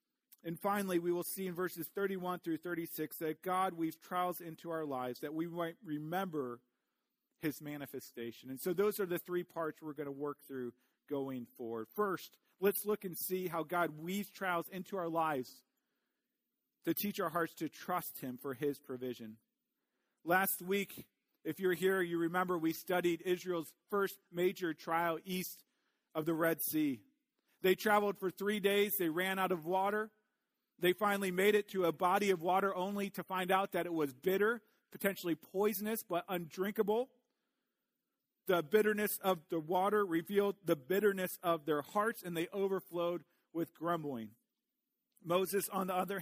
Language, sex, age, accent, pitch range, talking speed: English, male, 40-59, American, 165-200 Hz, 165 wpm